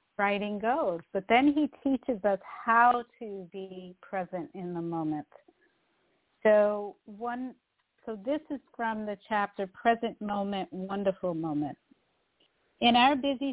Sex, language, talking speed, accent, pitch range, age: female, English, 125 wpm, American, 185-225 Hz, 50-69